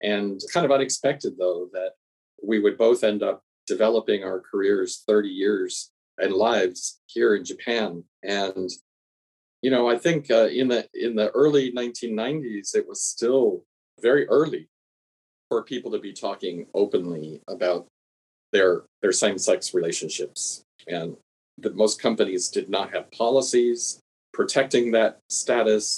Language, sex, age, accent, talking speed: English, male, 40-59, American, 140 wpm